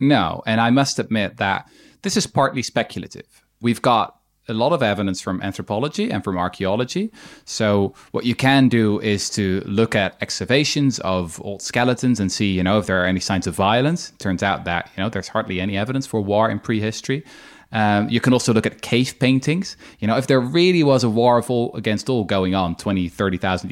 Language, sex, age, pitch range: English, male, 20-39, 100-135 Hz